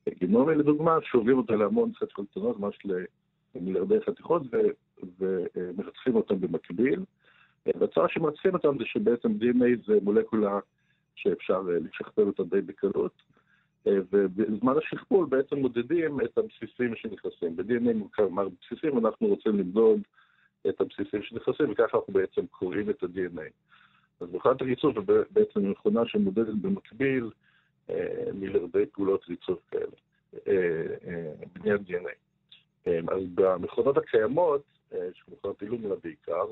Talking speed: 110 wpm